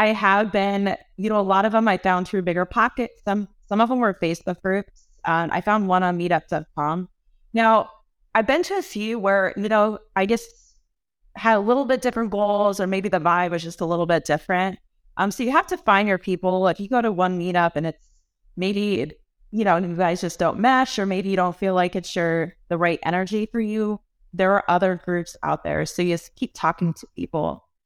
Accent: American